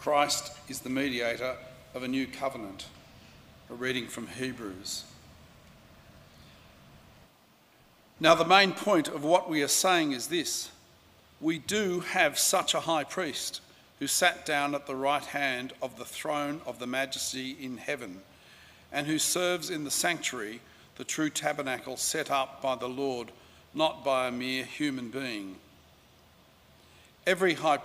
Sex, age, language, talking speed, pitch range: male, 50-69, English, 145 wpm, 130-160 Hz